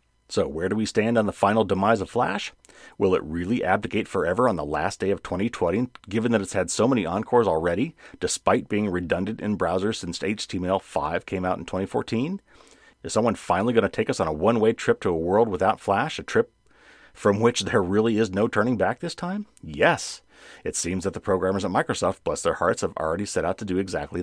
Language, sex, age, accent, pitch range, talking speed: English, male, 30-49, American, 90-115 Hz, 215 wpm